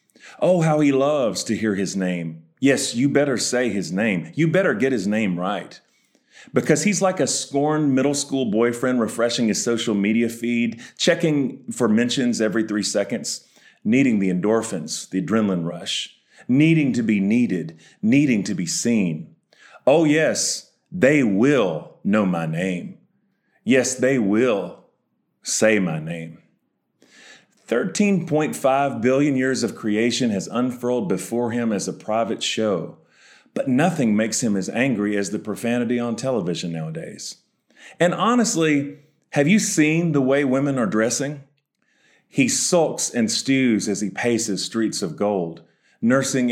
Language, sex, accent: English, male, American